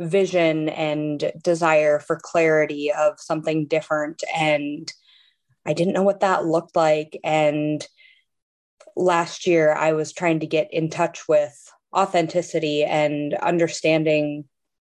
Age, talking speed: 20-39, 120 wpm